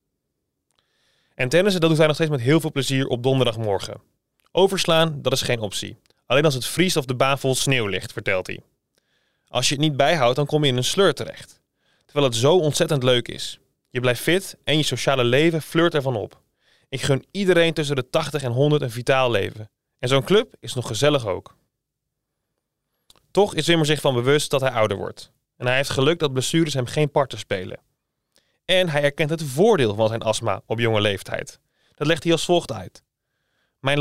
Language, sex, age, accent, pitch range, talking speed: Dutch, male, 20-39, Dutch, 125-160 Hz, 200 wpm